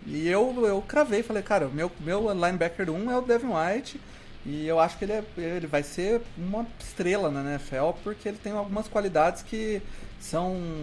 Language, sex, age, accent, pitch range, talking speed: Portuguese, male, 30-49, Brazilian, 170-255 Hz, 190 wpm